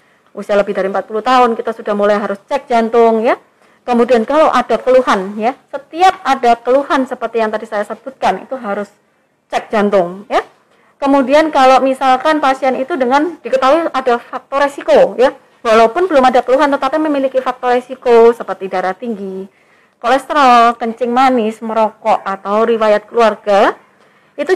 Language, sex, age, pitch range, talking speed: Indonesian, female, 30-49, 220-280 Hz, 145 wpm